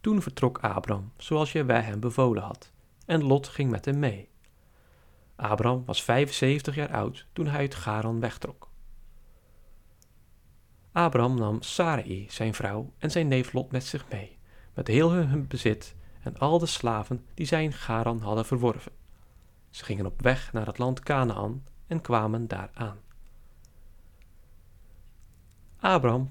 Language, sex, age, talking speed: Dutch, male, 40-59, 145 wpm